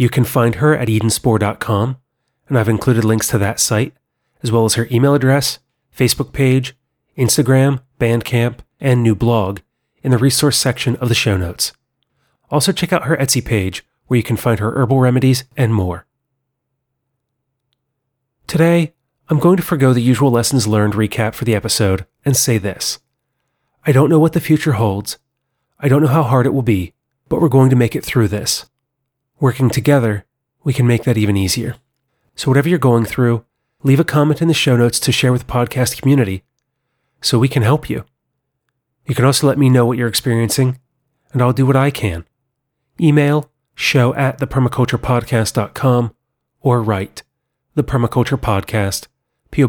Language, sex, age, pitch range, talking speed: English, male, 30-49, 115-135 Hz, 175 wpm